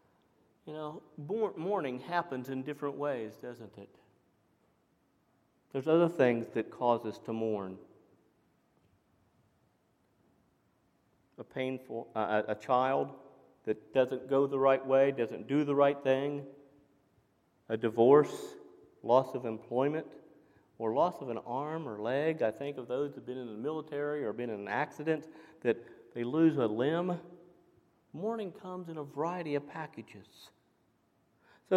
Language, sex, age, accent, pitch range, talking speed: English, male, 40-59, American, 130-190 Hz, 140 wpm